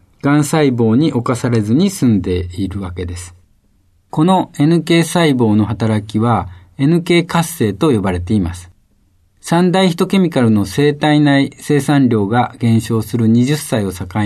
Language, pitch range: Japanese, 100-145 Hz